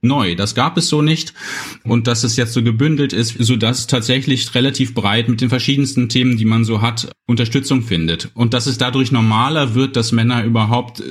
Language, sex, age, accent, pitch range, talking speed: German, male, 30-49, German, 105-130 Hz, 195 wpm